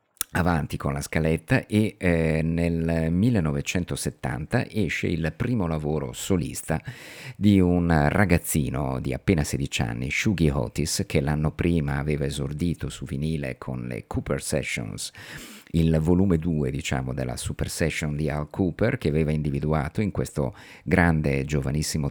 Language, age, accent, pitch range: Italian, 50-69, native, 70-85 Hz